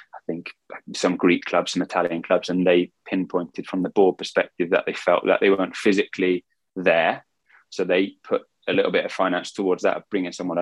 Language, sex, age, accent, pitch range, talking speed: English, male, 20-39, British, 90-95 Hz, 205 wpm